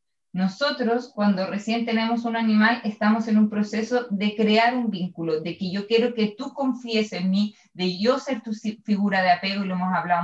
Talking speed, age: 200 wpm, 20-39